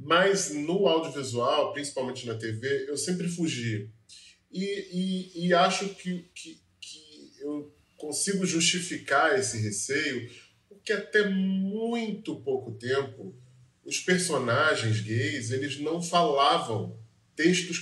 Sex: male